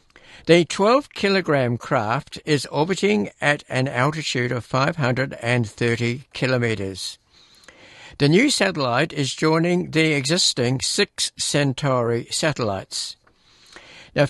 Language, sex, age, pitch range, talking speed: English, male, 60-79, 120-155 Hz, 90 wpm